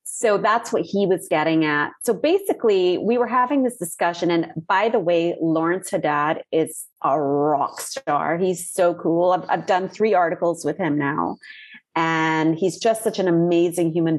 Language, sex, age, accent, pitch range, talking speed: English, female, 30-49, American, 170-230 Hz, 180 wpm